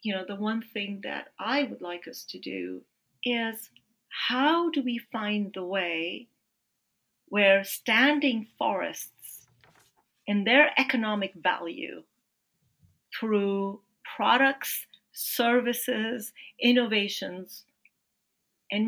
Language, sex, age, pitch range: English, female, 40-59, 185-240 Hz